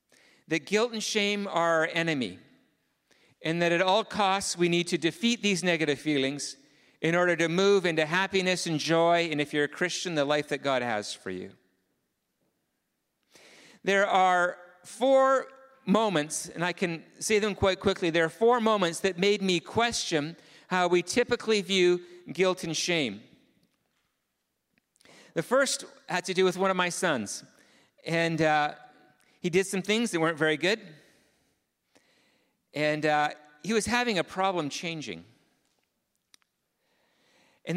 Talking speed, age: 150 wpm, 50-69